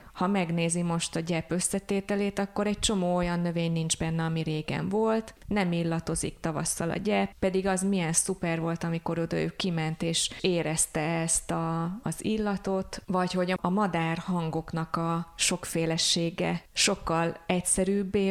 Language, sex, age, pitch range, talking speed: Hungarian, female, 20-39, 170-195 Hz, 140 wpm